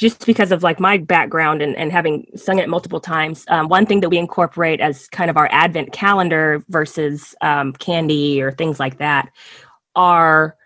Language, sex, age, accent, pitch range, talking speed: English, female, 20-39, American, 155-195 Hz, 185 wpm